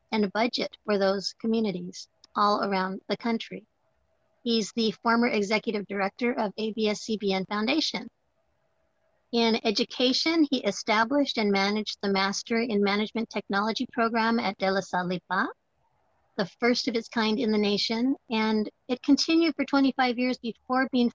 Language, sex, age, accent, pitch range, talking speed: English, female, 50-69, American, 205-245 Hz, 140 wpm